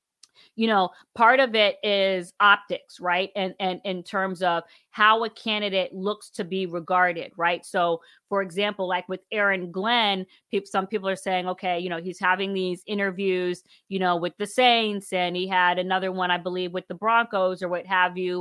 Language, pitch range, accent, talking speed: English, 180-205 Hz, American, 190 wpm